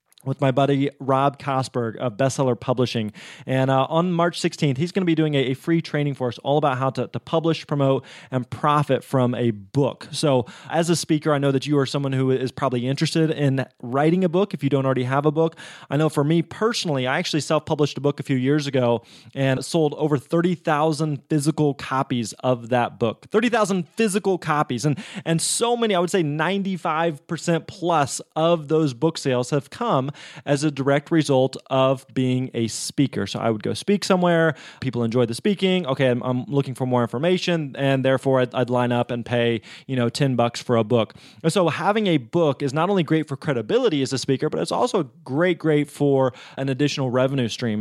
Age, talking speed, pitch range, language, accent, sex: 20-39, 205 wpm, 130-160 Hz, English, American, male